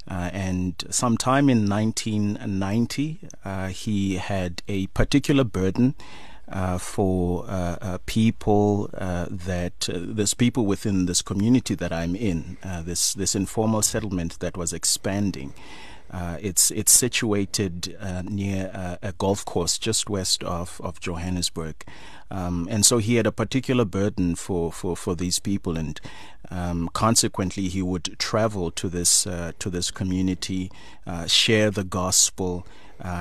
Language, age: English, 30-49